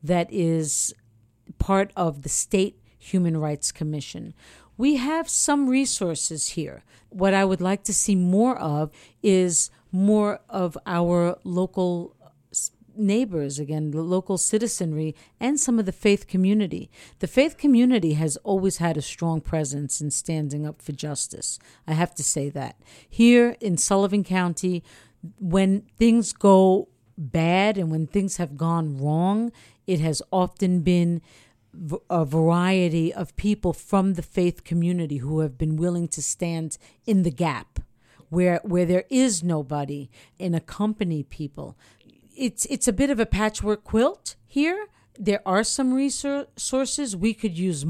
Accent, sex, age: American, female, 50-69